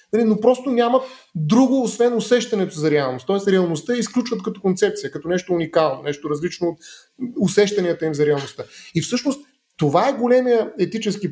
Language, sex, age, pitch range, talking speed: Bulgarian, male, 30-49, 175-220 Hz, 155 wpm